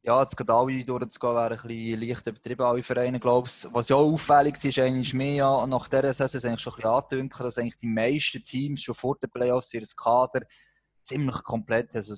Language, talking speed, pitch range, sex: German, 185 wpm, 115-130 Hz, male